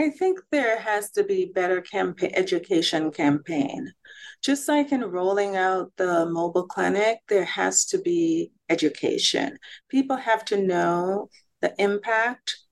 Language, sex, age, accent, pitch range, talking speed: English, female, 40-59, American, 170-235 Hz, 130 wpm